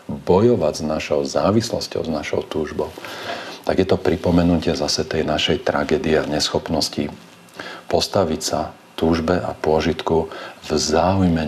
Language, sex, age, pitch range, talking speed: Slovak, male, 40-59, 75-90 Hz, 125 wpm